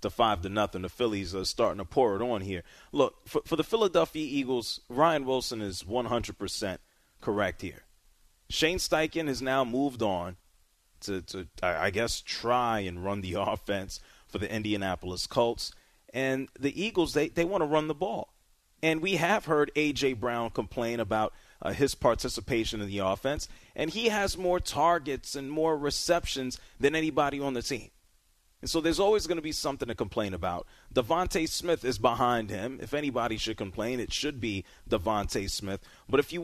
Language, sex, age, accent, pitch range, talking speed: English, male, 30-49, American, 100-150 Hz, 180 wpm